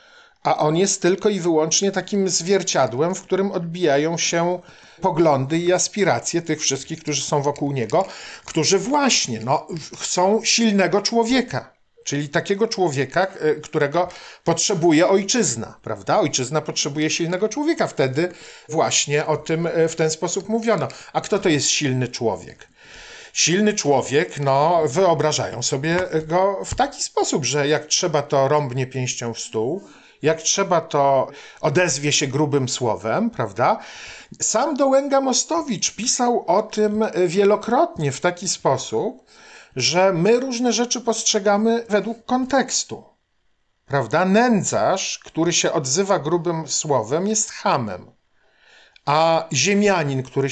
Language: Polish